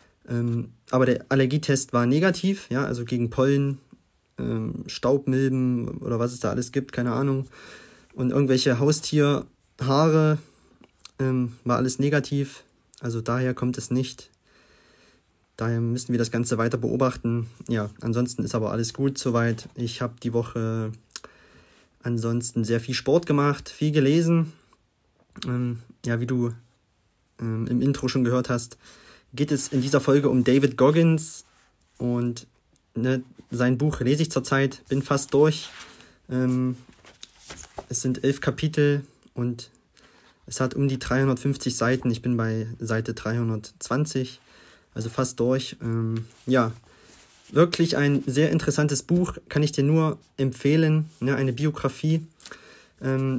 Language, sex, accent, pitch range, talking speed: German, male, German, 120-140 Hz, 130 wpm